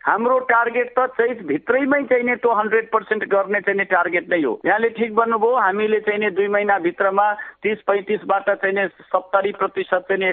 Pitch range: 160-225 Hz